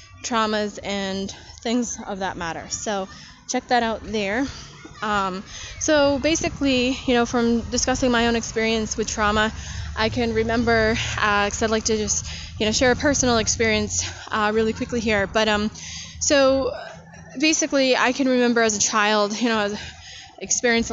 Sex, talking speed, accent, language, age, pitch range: female, 160 wpm, American, English, 10-29, 195-230 Hz